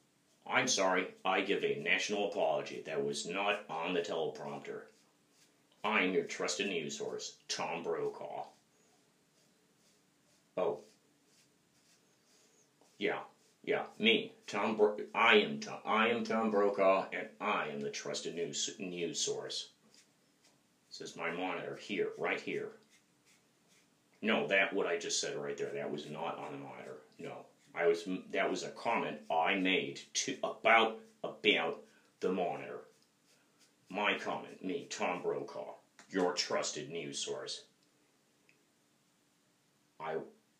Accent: American